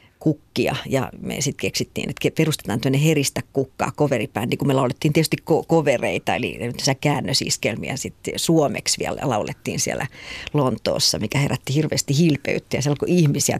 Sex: female